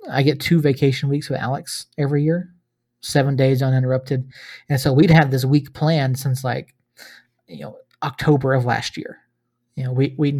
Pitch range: 125-145 Hz